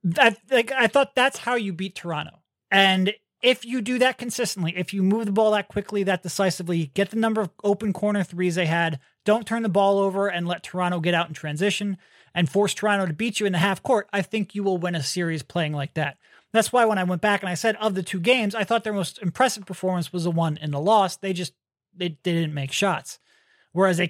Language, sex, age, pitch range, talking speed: English, male, 30-49, 170-215 Hz, 245 wpm